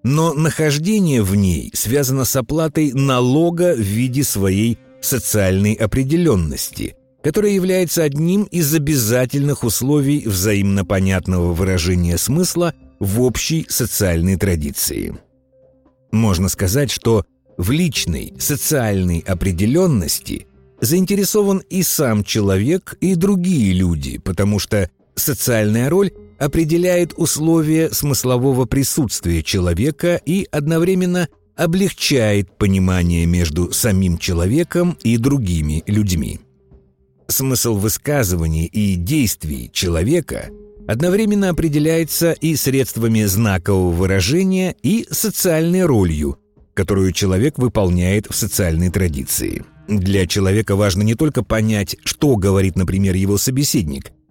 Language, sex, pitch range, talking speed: Russian, male, 95-155 Hz, 100 wpm